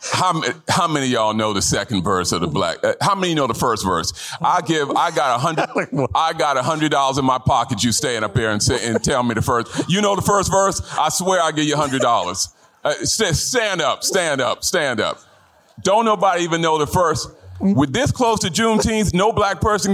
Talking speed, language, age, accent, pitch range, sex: 230 wpm, English, 40-59, American, 95-140 Hz, male